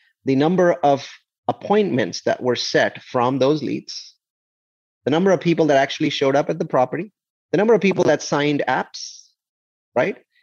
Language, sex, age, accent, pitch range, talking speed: English, male, 30-49, Indian, 125-165 Hz, 165 wpm